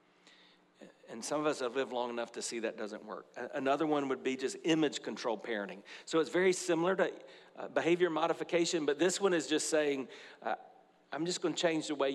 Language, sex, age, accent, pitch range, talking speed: English, male, 50-69, American, 130-165 Hz, 205 wpm